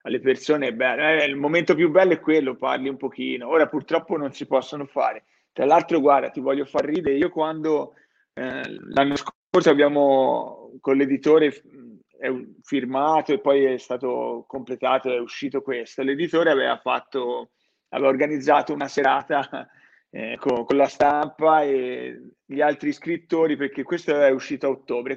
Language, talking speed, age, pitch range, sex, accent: Italian, 155 wpm, 30-49, 135-160 Hz, male, native